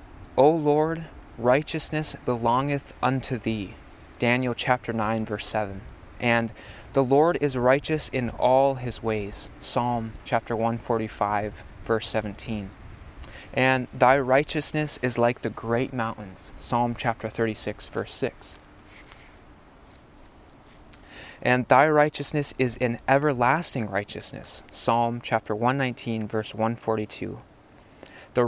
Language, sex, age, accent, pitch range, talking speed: English, male, 20-39, American, 110-135 Hz, 105 wpm